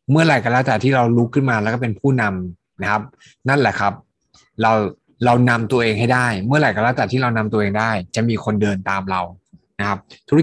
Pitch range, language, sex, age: 105-135 Hz, Thai, male, 20-39